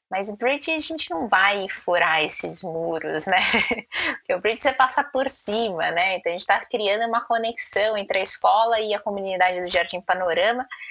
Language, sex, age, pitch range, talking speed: Portuguese, female, 20-39, 185-245 Hz, 195 wpm